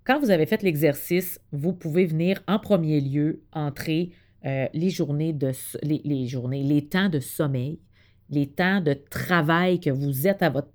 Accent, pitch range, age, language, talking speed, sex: Canadian, 140-180 Hz, 40-59, French, 180 wpm, female